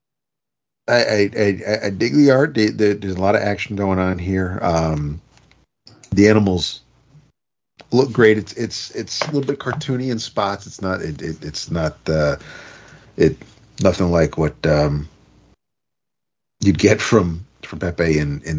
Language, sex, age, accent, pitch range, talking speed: English, male, 40-59, American, 80-105 Hz, 155 wpm